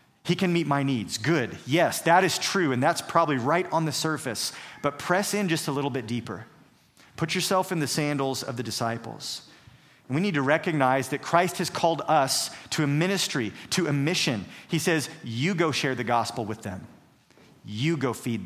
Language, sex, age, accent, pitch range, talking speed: English, male, 40-59, American, 125-160 Hz, 195 wpm